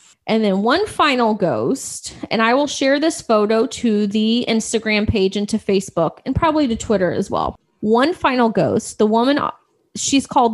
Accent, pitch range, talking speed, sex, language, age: American, 200-255 Hz, 175 wpm, female, English, 20-39